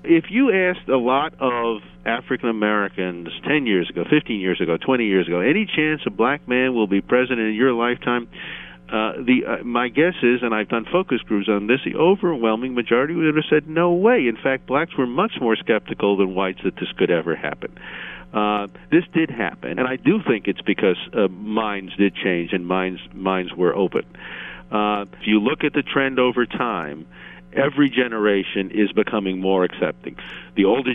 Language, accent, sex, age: English, American, male, 50-69